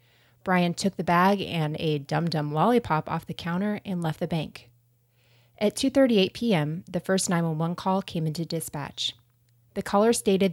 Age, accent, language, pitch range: 30-49, American, English, 155-200 Hz